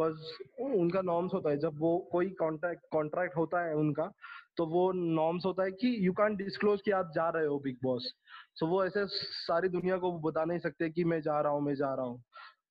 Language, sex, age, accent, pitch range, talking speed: Hindi, male, 20-39, native, 160-195 Hz, 80 wpm